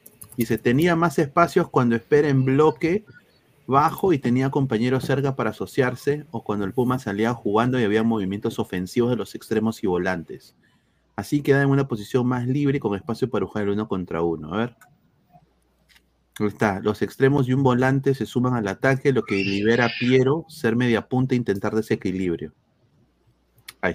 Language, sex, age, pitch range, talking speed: Spanish, male, 30-49, 110-140 Hz, 180 wpm